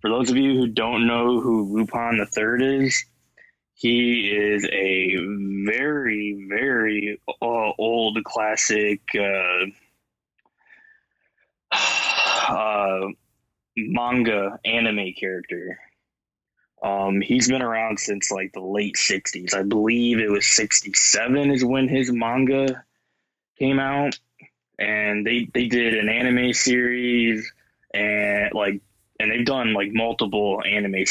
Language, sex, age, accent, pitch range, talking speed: English, male, 20-39, American, 100-120 Hz, 115 wpm